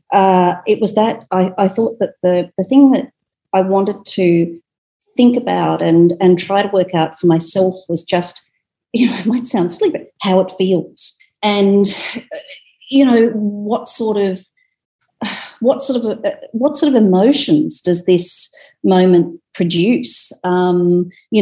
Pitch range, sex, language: 170-210 Hz, female, English